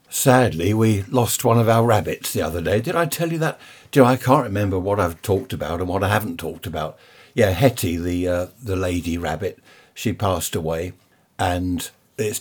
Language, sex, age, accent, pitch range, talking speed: English, male, 60-79, British, 90-125 Hz, 210 wpm